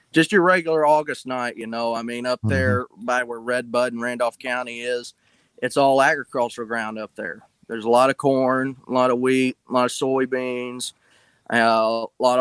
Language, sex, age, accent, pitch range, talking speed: English, male, 20-39, American, 115-130 Hz, 195 wpm